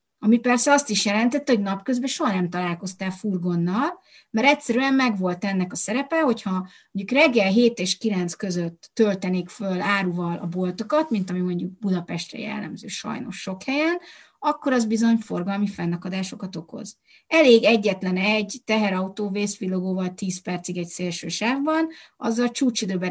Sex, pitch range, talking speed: female, 185-235 Hz, 145 wpm